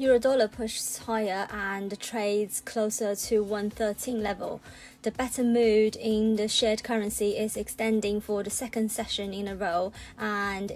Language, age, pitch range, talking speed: English, 20-39, 200-220 Hz, 155 wpm